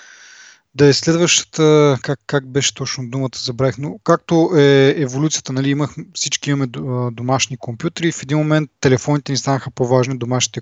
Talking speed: 145 wpm